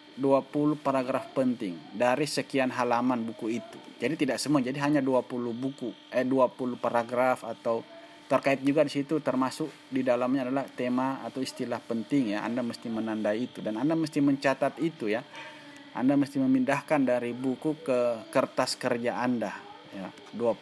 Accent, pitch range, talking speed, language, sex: native, 125-160 Hz, 150 wpm, Indonesian, male